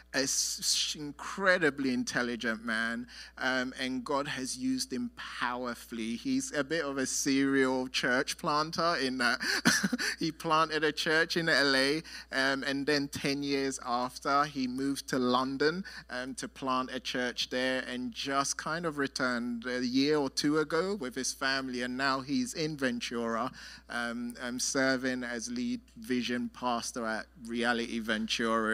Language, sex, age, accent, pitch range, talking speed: English, male, 30-49, British, 115-145 Hz, 150 wpm